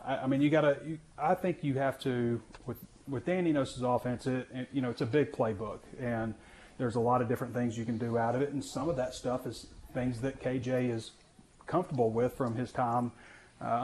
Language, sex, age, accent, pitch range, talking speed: English, male, 30-49, American, 115-140 Hz, 225 wpm